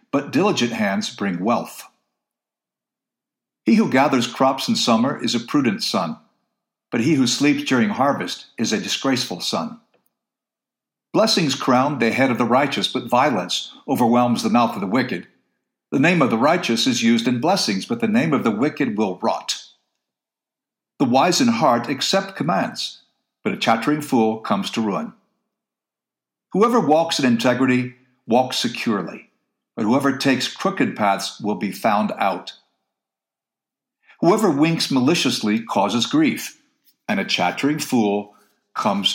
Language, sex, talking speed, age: English, male, 145 wpm, 60-79